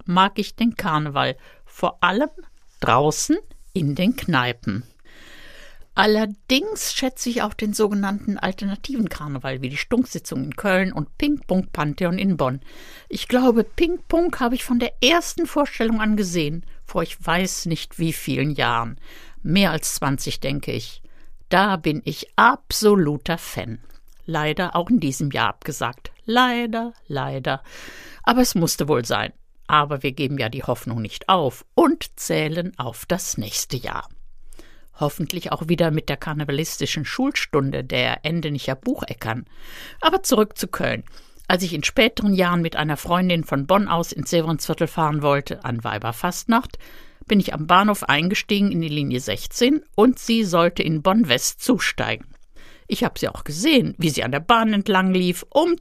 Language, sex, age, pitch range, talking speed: German, female, 60-79, 150-220 Hz, 155 wpm